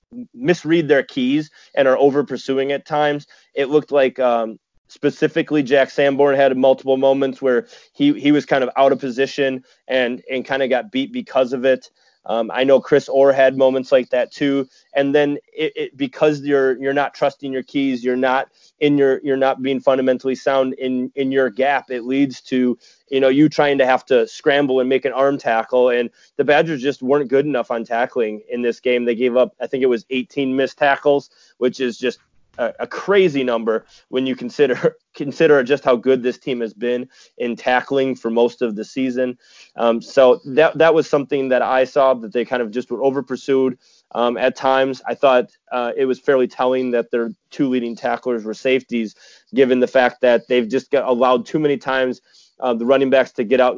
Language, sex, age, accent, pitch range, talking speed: English, male, 30-49, American, 125-140 Hz, 205 wpm